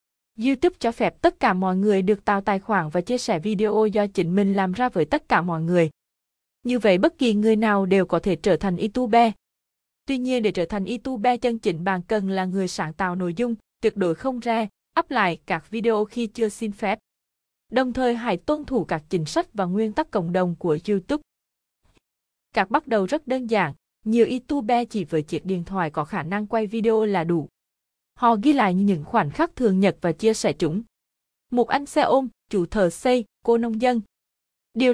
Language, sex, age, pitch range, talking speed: Vietnamese, female, 20-39, 185-240 Hz, 210 wpm